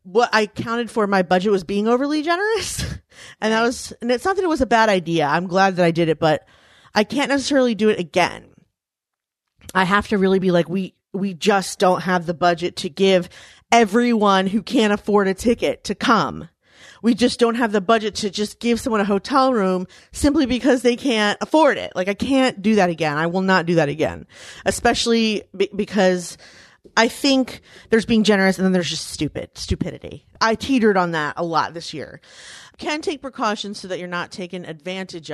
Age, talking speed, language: 30-49, 200 wpm, English